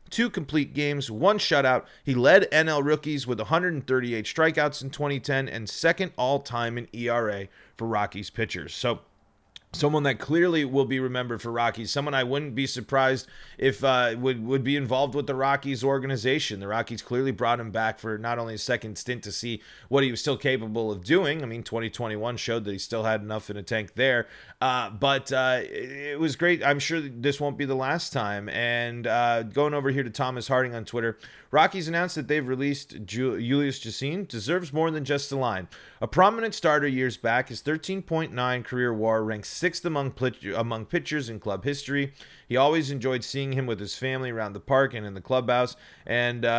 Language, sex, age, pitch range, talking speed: English, male, 30-49, 110-140 Hz, 195 wpm